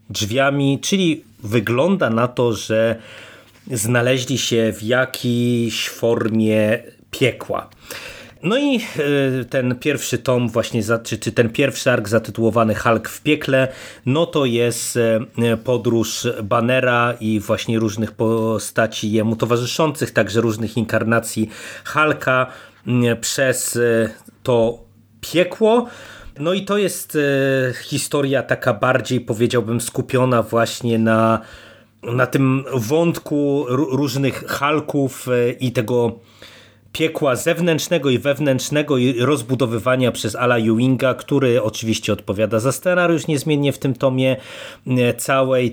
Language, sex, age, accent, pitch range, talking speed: Polish, male, 30-49, native, 115-135 Hz, 105 wpm